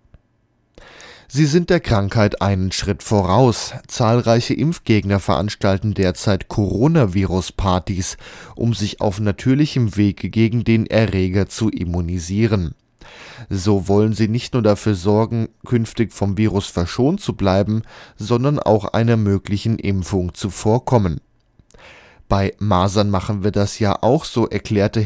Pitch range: 95-115 Hz